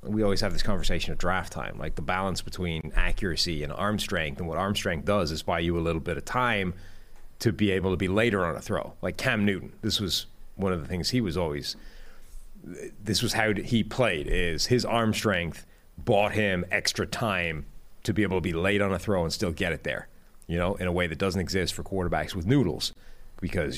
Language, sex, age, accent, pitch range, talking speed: English, male, 30-49, American, 90-110 Hz, 225 wpm